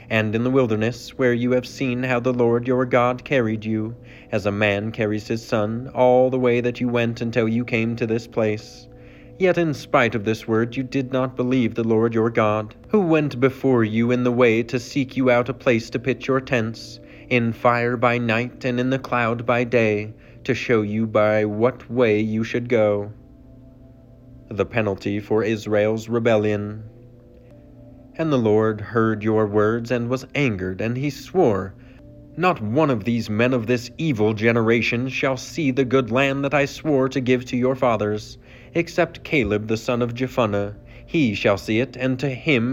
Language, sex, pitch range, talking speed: English, male, 110-130 Hz, 190 wpm